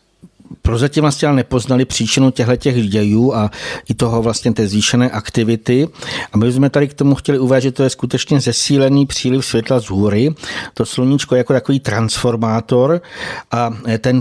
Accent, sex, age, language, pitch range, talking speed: native, male, 60-79, Czech, 115-130 Hz, 165 wpm